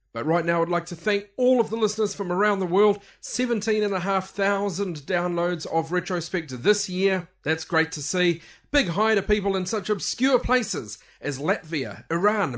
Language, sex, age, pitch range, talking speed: English, male, 40-59, 150-200 Hz, 170 wpm